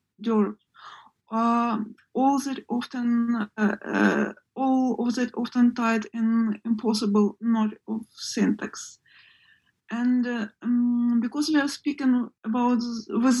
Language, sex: English, female